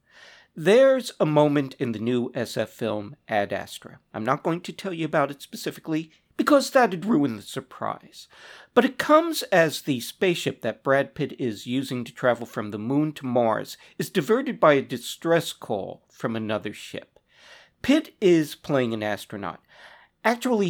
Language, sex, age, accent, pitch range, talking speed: English, male, 50-69, American, 125-180 Hz, 165 wpm